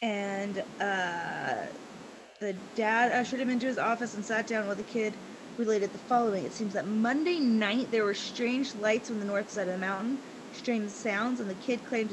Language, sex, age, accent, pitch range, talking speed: English, female, 20-39, American, 205-250 Hz, 200 wpm